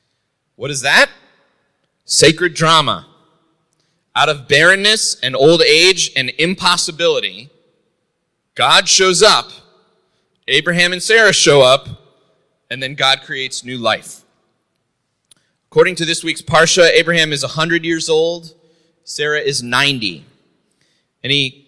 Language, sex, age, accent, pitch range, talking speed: English, male, 30-49, American, 135-180 Hz, 115 wpm